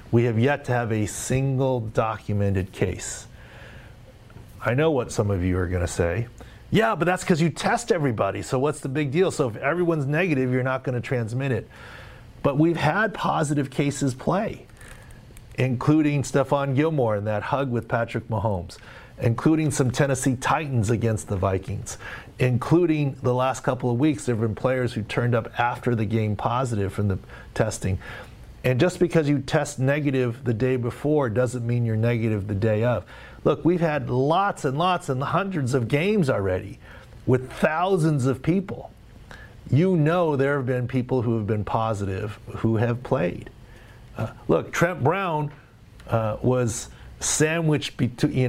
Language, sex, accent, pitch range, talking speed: English, male, American, 110-145 Hz, 165 wpm